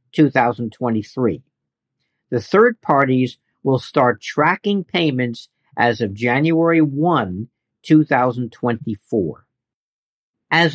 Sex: male